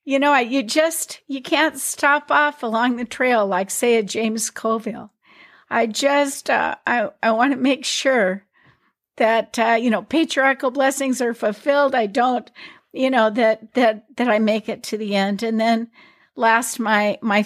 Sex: female